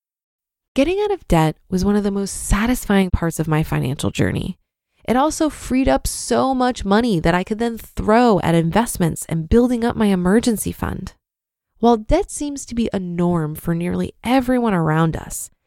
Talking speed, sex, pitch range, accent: 180 wpm, female, 175-245 Hz, American